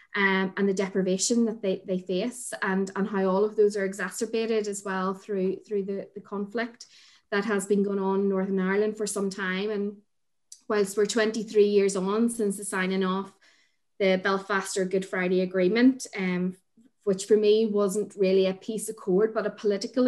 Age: 20-39